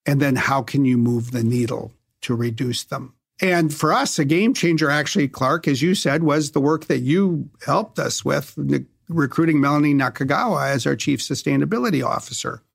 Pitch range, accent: 125-160 Hz, American